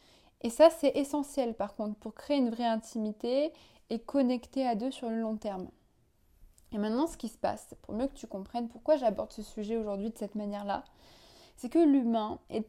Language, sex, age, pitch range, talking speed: French, female, 20-39, 215-270 Hz, 200 wpm